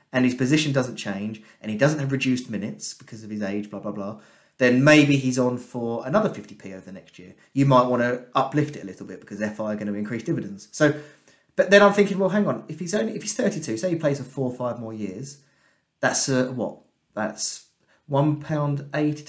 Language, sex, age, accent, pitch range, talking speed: English, male, 30-49, British, 110-150 Hz, 230 wpm